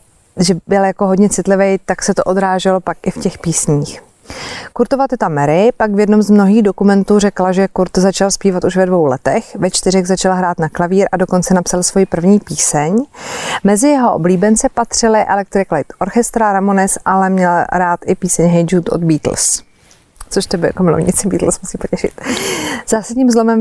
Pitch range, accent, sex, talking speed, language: 175-200 Hz, native, female, 180 wpm, Czech